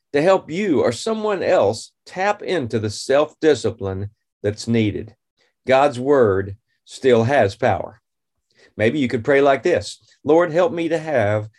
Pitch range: 115-150 Hz